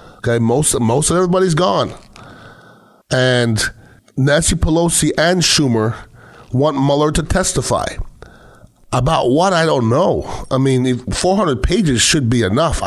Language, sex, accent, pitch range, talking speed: English, male, American, 115-145 Hz, 120 wpm